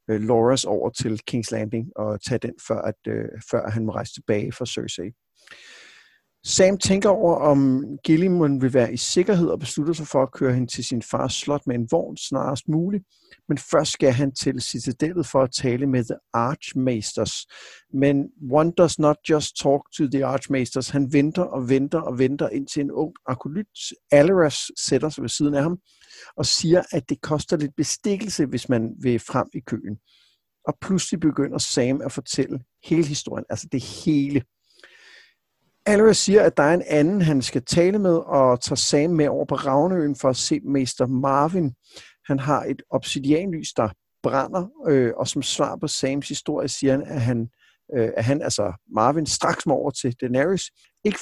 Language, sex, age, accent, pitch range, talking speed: Danish, male, 60-79, native, 130-165 Hz, 180 wpm